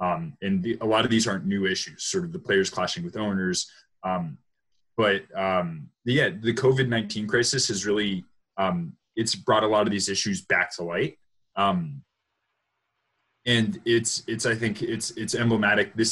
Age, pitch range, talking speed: 20-39, 100-135 Hz, 180 wpm